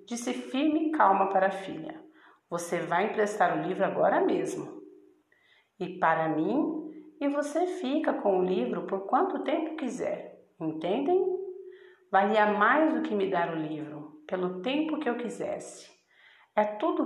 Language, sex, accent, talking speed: Portuguese, female, Brazilian, 150 wpm